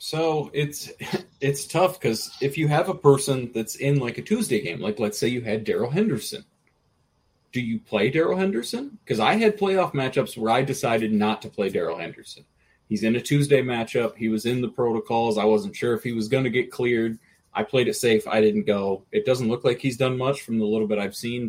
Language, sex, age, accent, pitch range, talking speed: English, male, 30-49, American, 110-145 Hz, 225 wpm